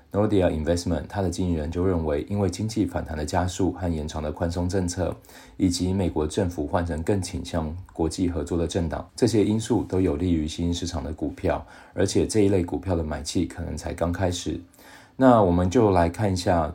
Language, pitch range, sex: Chinese, 85-95 Hz, male